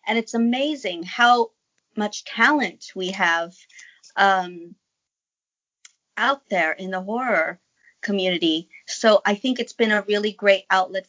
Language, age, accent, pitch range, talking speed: English, 30-49, American, 185-230 Hz, 130 wpm